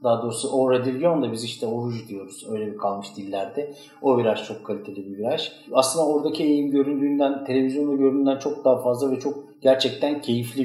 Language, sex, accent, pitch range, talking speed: Turkish, male, native, 120-150 Hz, 170 wpm